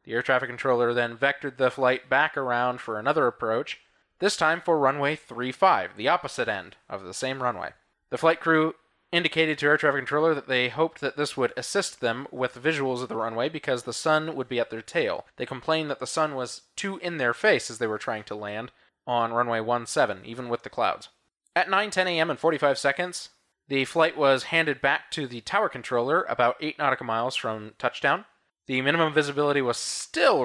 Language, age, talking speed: English, 20-39, 205 wpm